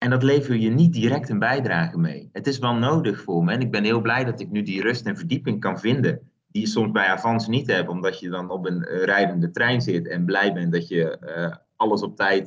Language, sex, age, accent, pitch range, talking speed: Dutch, male, 30-49, Dutch, 95-125 Hz, 255 wpm